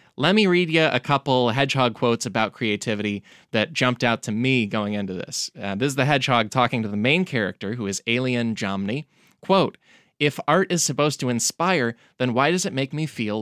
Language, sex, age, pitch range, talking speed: English, male, 20-39, 120-160 Hz, 205 wpm